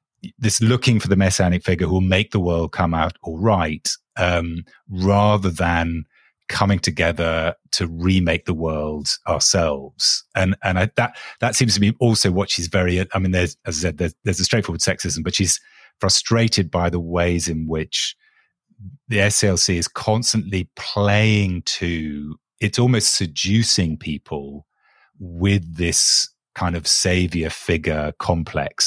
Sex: male